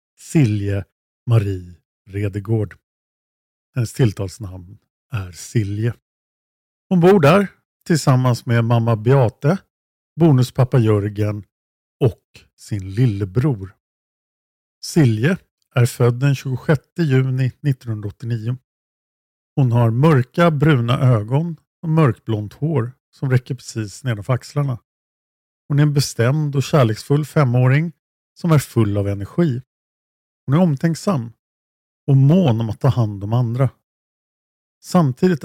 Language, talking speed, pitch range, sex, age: Swedish, 105 wpm, 105-150 Hz, male, 50-69